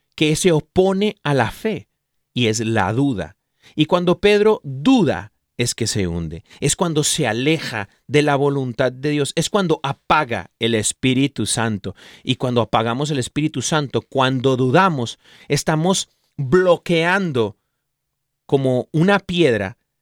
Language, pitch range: Spanish, 120-160 Hz